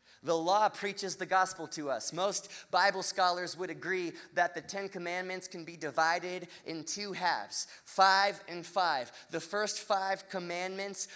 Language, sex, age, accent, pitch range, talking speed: English, male, 30-49, American, 175-200 Hz, 155 wpm